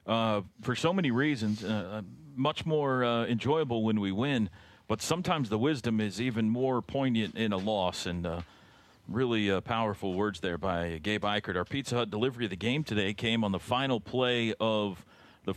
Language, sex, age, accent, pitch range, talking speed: English, male, 40-59, American, 100-140 Hz, 190 wpm